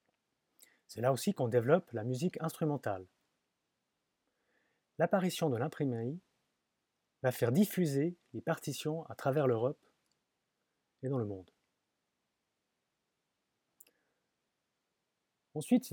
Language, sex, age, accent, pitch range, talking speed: French, male, 30-49, French, 120-160 Hz, 90 wpm